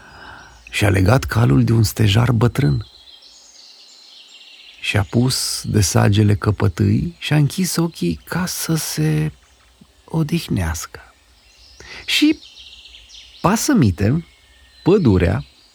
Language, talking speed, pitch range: Romanian, 80 wpm, 80-130 Hz